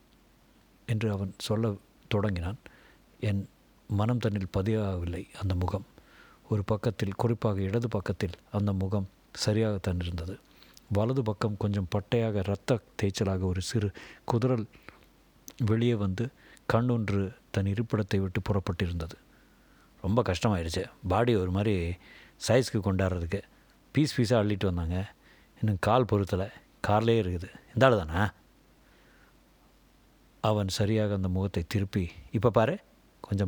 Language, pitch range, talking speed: Tamil, 95-110 Hz, 110 wpm